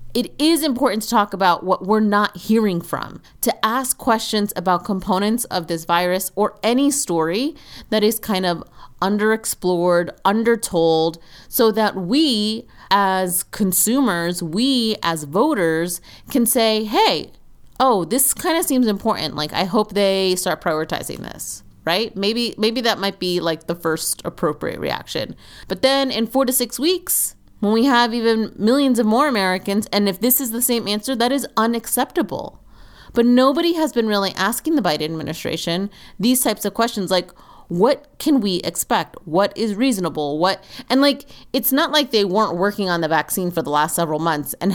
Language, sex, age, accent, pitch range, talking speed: English, female, 30-49, American, 170-235 Hz, 170 wpm